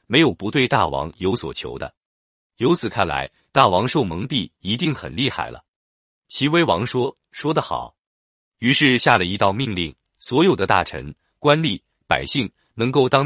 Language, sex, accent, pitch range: Chinese, male, native, 85-135 Hz